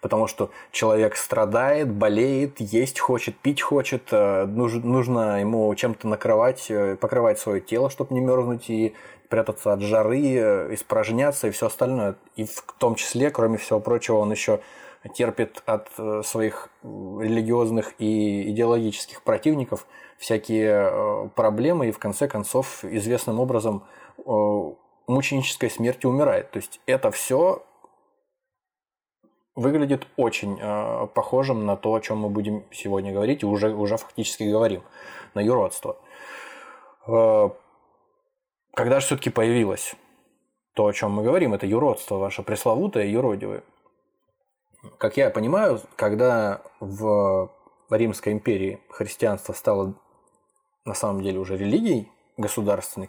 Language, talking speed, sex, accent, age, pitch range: Russian, 120 wpm, male, native, 20-39, 105-140 Hz